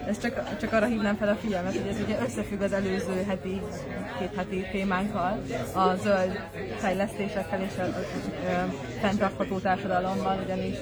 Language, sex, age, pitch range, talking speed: Hungarian, female, 20-39, 190-220 Hz, 145 wpm